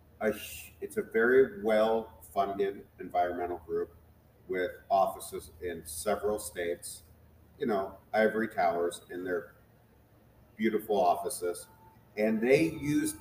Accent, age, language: American, 40-59, English